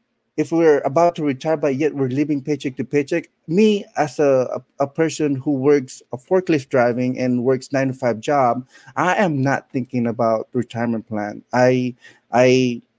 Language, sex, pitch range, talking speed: English, male, 125-150 Hz, 175 wpm